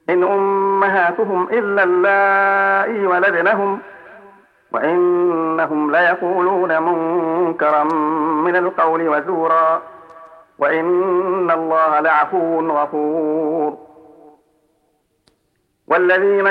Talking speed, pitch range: 60 wpm, 160-195 Hz